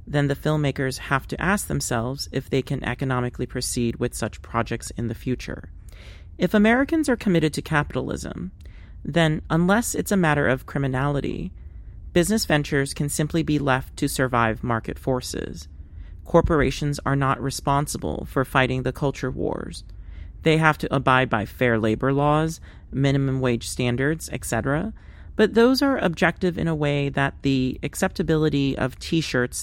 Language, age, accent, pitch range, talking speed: English, 40-59, American, 115-150 Hz, 150 wpm